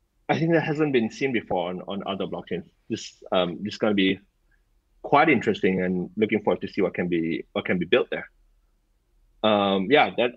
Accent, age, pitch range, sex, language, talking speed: Malaysian, 30-49, 100-125 Hz, male, English, 210 wpm